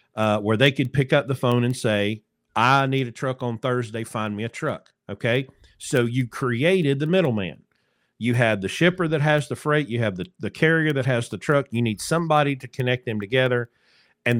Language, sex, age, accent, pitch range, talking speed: English, male, 50-69, American, 115-145 Hz, 215 wpm